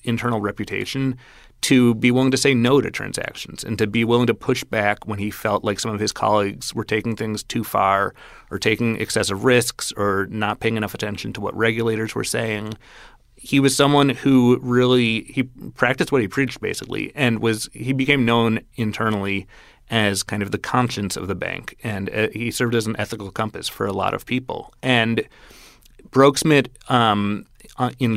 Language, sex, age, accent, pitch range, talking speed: English, male, 30-49, American, 105-125 Hz, 185 wpm